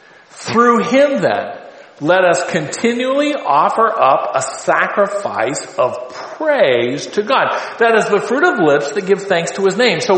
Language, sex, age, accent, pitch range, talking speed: English, male, 50-69, American, 165-235 Hz, 160 wpm